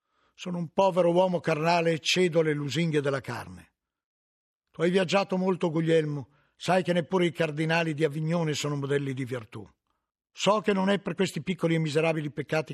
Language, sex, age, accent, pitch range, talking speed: Italian, male, 50-69, native, 145-180 Hz, 175 wpm